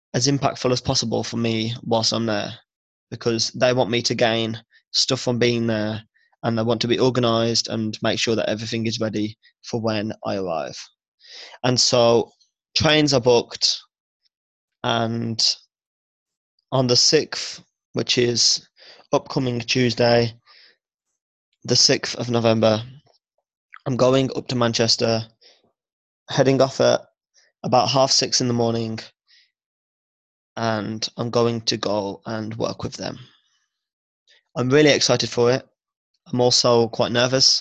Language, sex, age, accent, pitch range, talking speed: English, male, 20-39, British, 115-125 Hz, 135 wpm